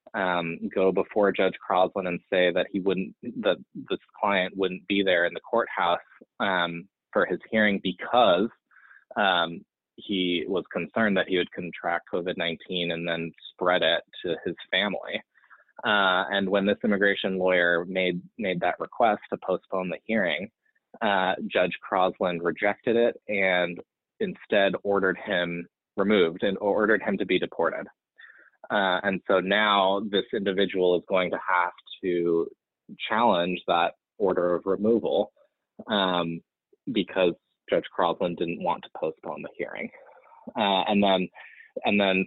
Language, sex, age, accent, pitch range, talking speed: English, male, 20-39, American, 90-100 Hz, 145 wpm